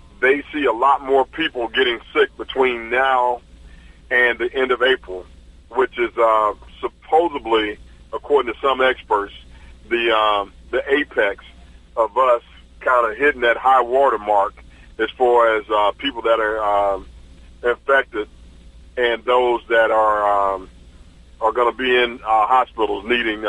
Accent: American